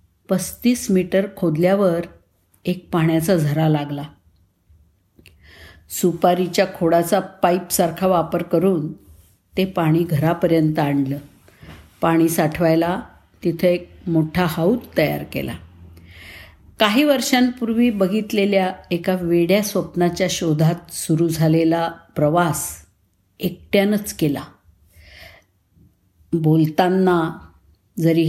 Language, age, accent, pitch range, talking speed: Marathi, 50-69, native, 140-190 Hz, 85 wpm